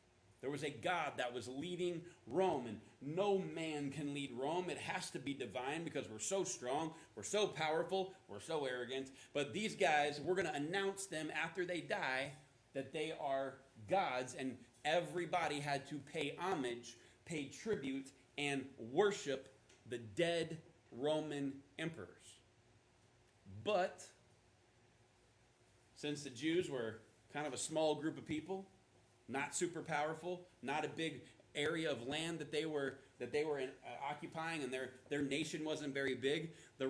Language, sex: English, male